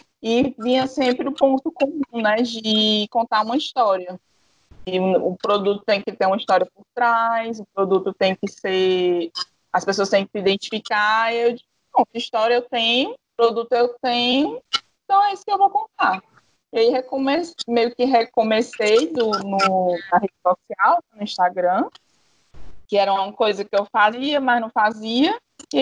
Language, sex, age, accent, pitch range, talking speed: Portuguese, female, 20-39, Brazilian, 200-245 Hz, 165 wpm